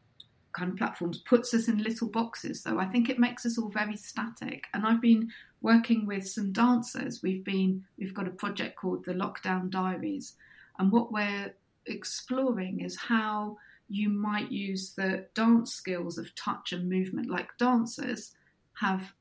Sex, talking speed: female, 160 wpm